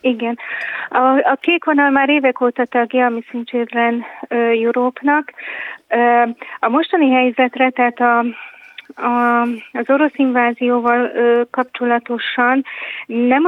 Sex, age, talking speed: female, 30-49, 100 wpm